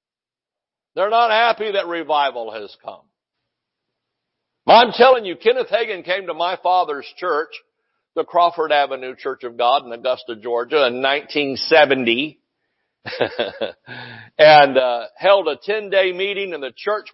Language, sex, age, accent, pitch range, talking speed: English, male, 60-79, American, 155-255 Hz, 130 wpm